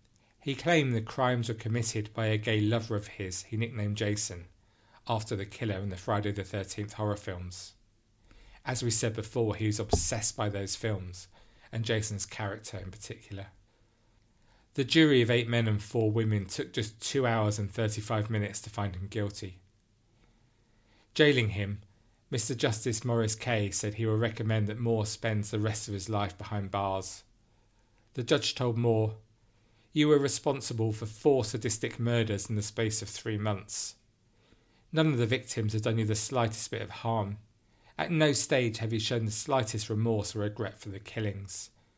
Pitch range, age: 105-115 Hz, 40-59